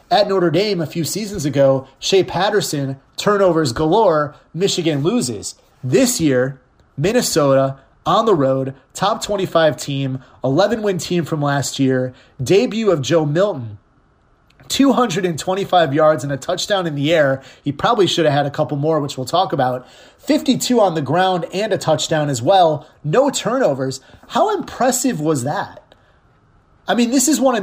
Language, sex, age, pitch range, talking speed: English, male, 30-49, 140-190 Hz, 155 wpm